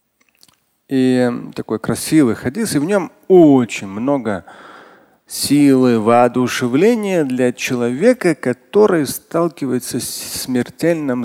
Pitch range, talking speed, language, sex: 115-175 Hz, 90 wpm, Russian, male